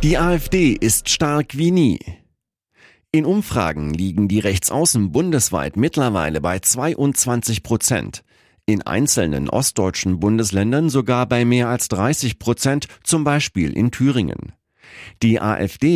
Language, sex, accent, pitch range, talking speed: German, male, German, 105-150 Hz, 120 wpm